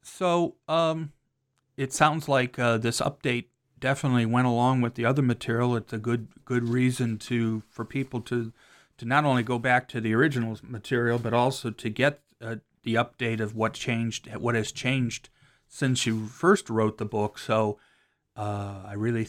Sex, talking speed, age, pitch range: male, 175 wpm, 40-59, 110-125 Hz